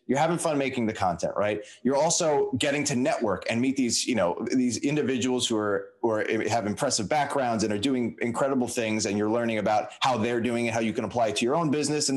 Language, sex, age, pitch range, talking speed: English, male, 30-49, 100-125 Hz, 235 wpm